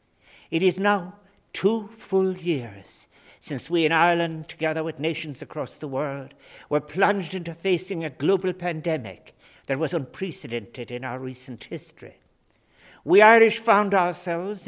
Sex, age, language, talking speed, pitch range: male, 60-79, English, 140 wpm, 130-180 Hz